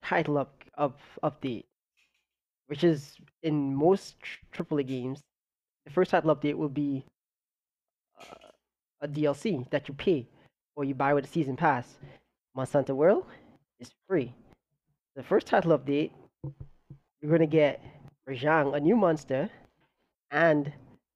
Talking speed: 130 wpm